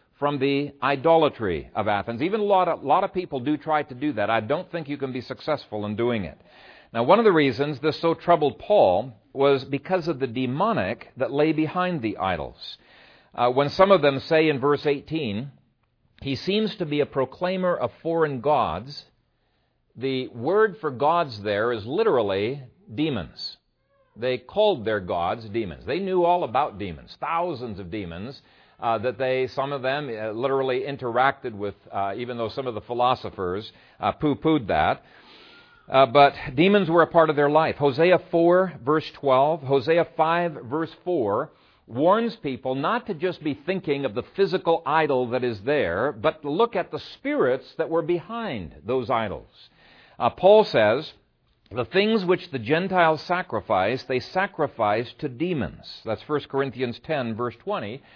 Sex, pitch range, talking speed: male, 125-165 Hz, 170 wpm